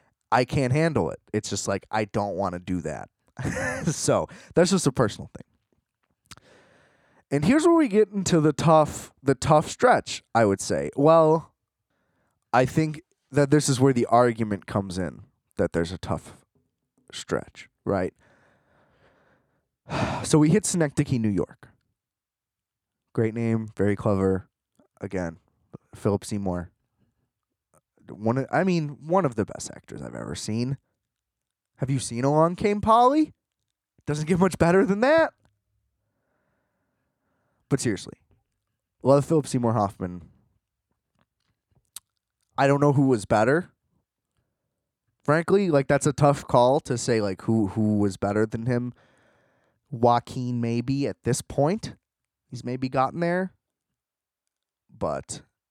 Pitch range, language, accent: 105-150 Hz, English, American